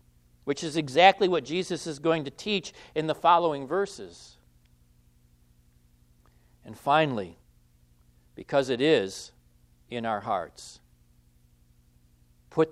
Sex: male